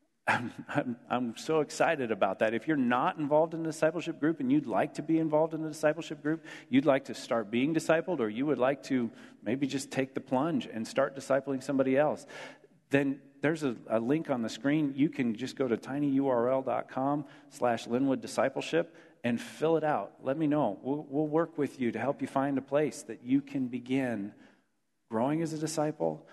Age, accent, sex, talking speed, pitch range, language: 40-59, American, male, 200 wpm, 120-150 Hz, English